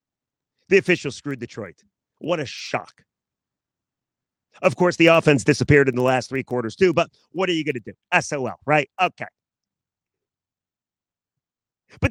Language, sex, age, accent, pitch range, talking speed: English, male, 40-59, American, 140-180 Hz, 145 wpm